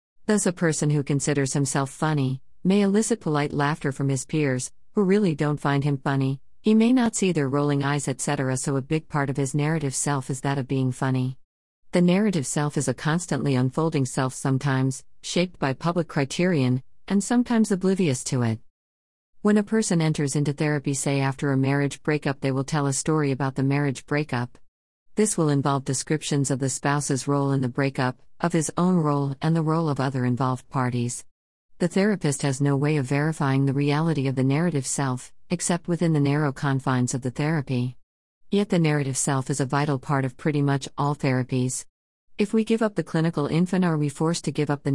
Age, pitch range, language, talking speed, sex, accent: 50-69, 135-160 Hz, English, 200 wpm, female, American